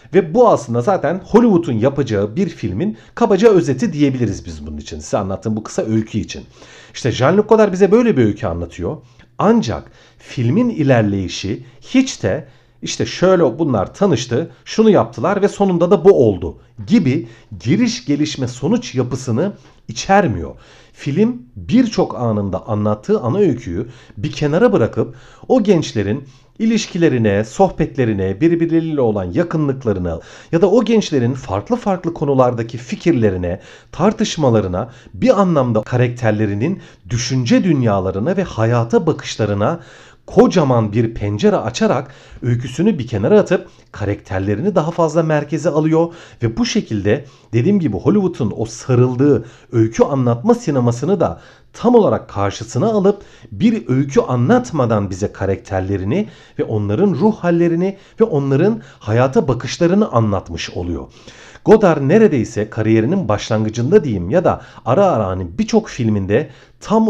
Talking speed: 125 wpm